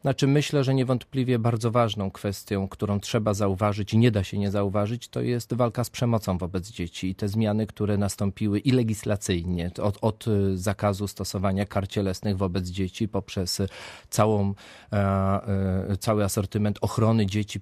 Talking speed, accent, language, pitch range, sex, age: 145 wpm, native, Polish, 95-110 Hz, male, 30-49